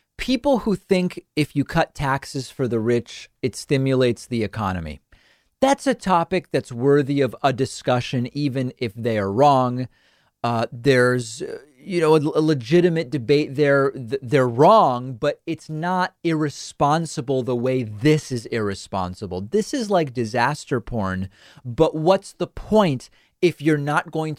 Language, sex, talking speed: English, male, 145 wpm